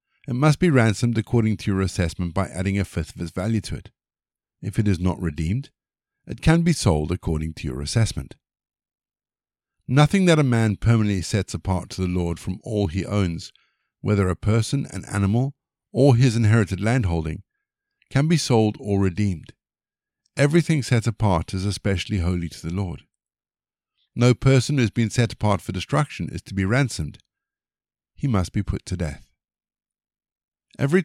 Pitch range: 90-125 Hz